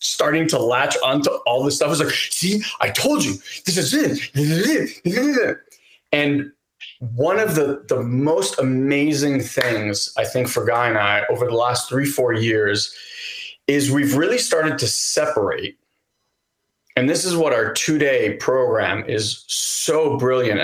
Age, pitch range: 30-49, 125-210 Hz